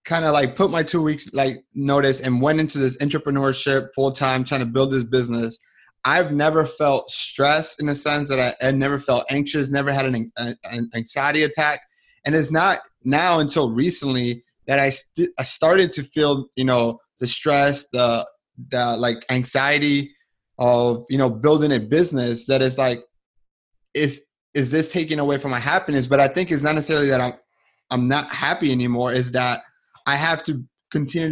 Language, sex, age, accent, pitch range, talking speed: English, male, 30-49, American, 130-155 Hz, 185 wpm